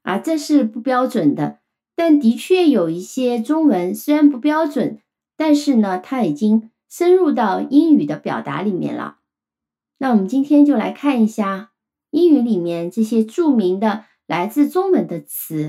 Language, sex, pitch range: Chinese, female, 175-285 Hz